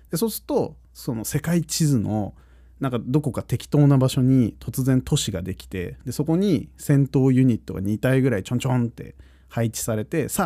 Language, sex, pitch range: Japanese, male, 100-145 Hz